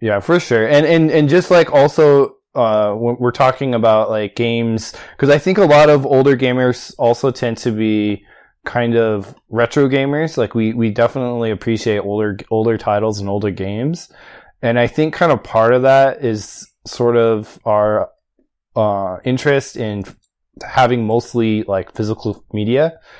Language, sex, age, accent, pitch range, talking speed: English, male, 20-39, American, 105-125 Hz, 160 wpm